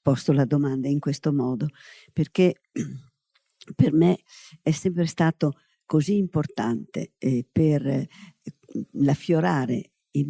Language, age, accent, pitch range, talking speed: Italian, 50-69, native, 140-170 Hz, 115 wpm